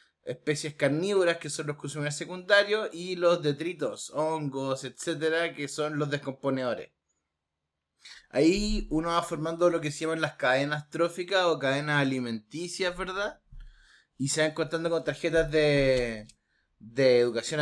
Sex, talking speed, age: male, 135 wpm, 20-39